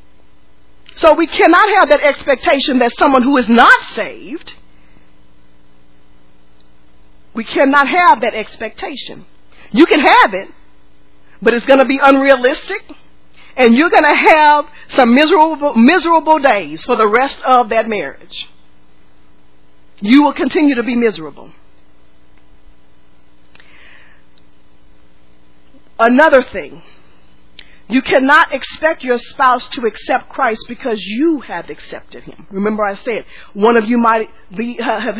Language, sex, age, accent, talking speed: English, female, 40-59, American, 120 wpm